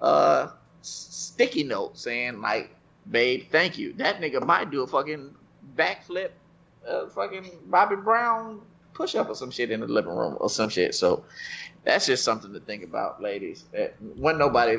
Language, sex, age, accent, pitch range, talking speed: English, male, 30-49, American, 110-160 Hz, 165 wpm